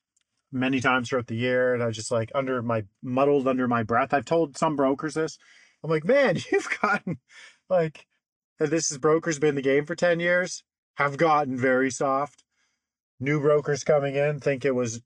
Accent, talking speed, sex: American, 195 wpm, male